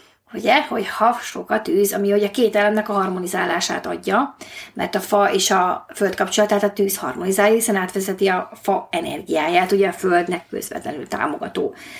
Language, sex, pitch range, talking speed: Hungarian, female, 195-225 Hz, 170 wpm